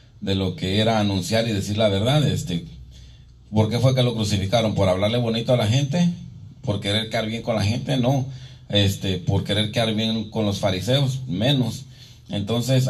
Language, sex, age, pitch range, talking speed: English, male, 40-59, 110-130 Hz, 185 wpm